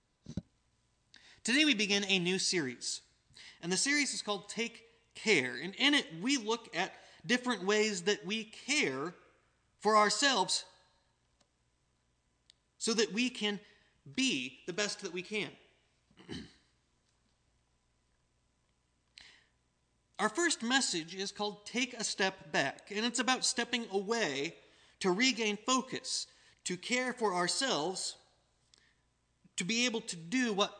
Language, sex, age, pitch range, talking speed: English, male, 30-49, 160-230 Hz, 125 wpm